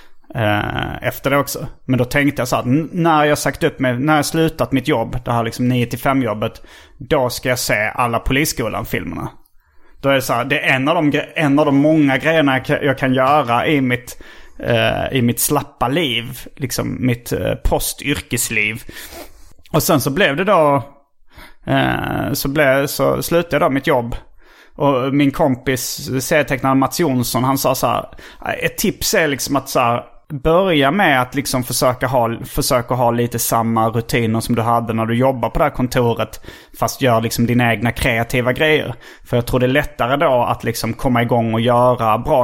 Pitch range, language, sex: 120-145 Hz, Swedish, male